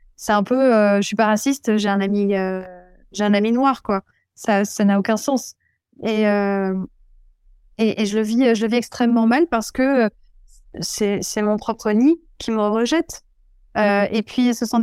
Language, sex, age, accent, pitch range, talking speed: French, female, 20-39, French, 205-245 Hz, 195 wpm